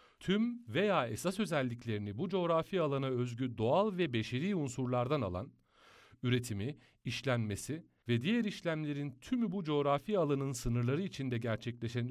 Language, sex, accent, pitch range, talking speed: Turkish, male, native, 115-175 Hz, 125 wpm